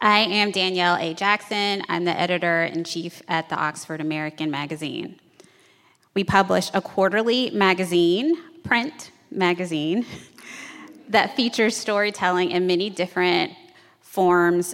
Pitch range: 170-205 Hz